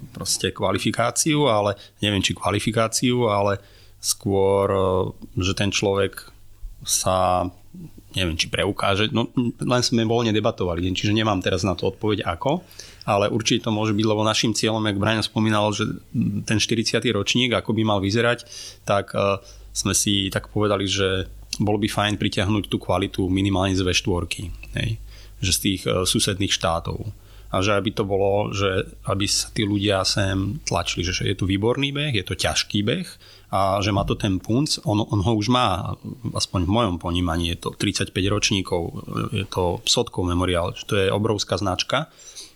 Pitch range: 95-110 Hz